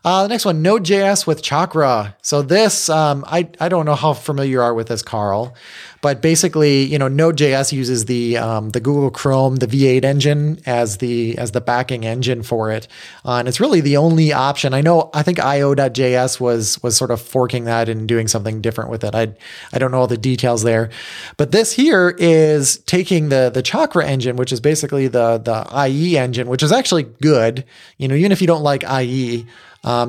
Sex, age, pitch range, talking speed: male, 30-49, 120-155 Hz, 205 wpm